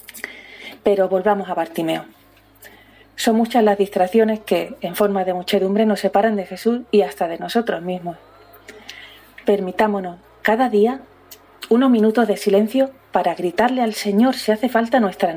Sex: female